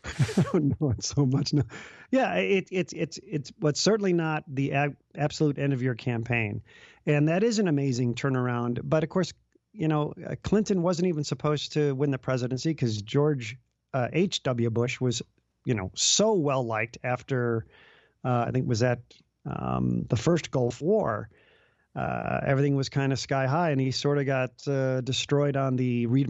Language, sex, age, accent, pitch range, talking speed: English, male, 40-59, American, 125-150 Hz, 190 wpm